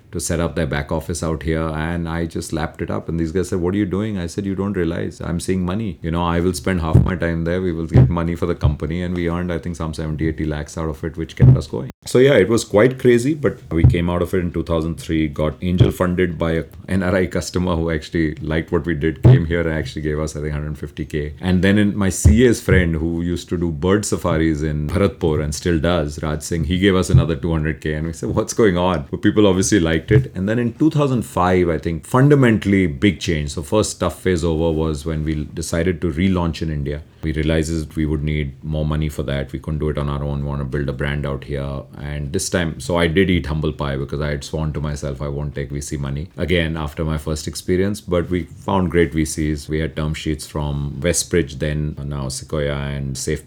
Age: 30-49